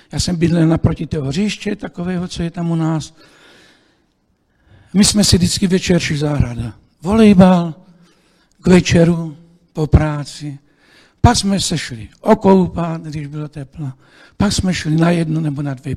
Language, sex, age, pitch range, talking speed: Czech, male, 60-79, 150-205 Hz, 145 wpm